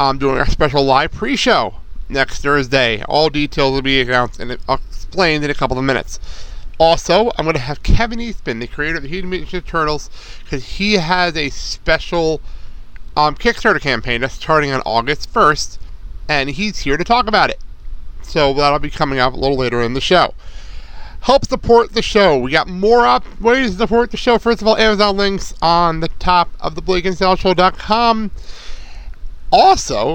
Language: English